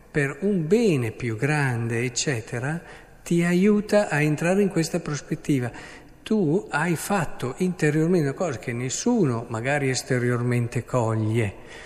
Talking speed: 120 wpm